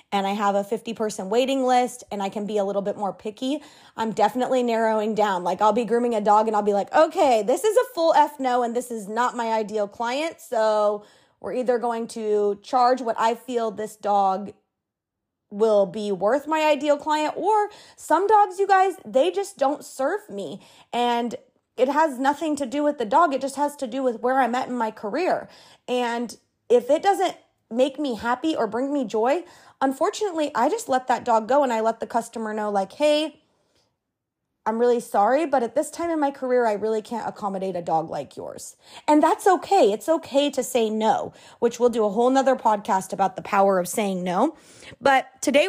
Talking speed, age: 210 wpm, 20-39